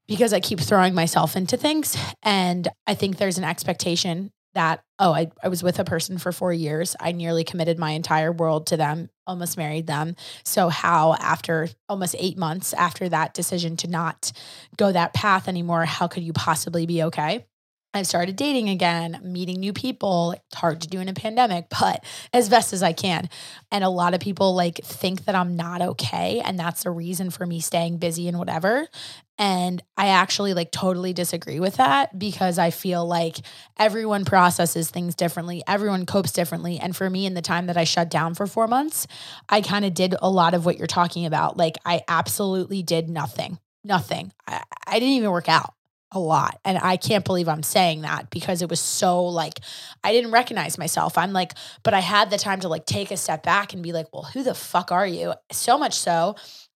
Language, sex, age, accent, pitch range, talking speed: English, female, 20-39, American, 165-190 Hz, 205 wpm